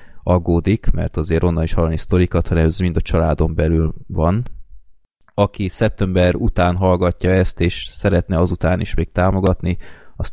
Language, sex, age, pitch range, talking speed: Hungarian, male, 20-39, 80-95 Hz, 150 wpm